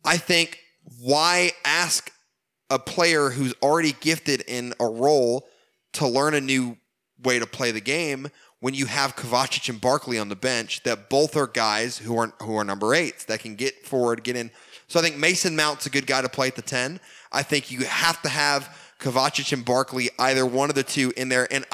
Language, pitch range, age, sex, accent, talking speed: English, 115-150 Hz, 20-39, male, American, 210 wpm